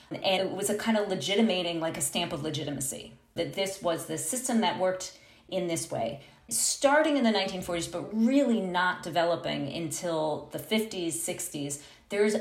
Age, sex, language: 40-59, female, English